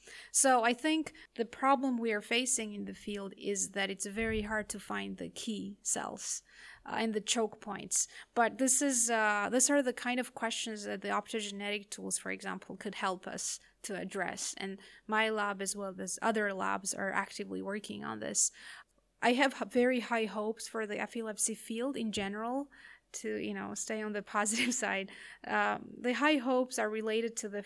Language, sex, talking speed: English, female, 190 wpm